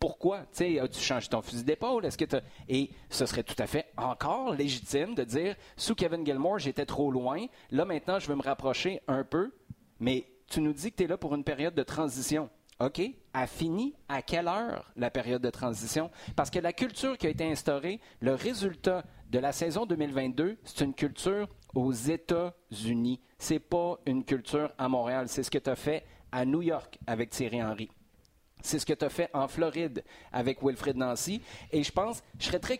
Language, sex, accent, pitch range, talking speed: French, male, Canadian, 130-170 Hz, 205 wpm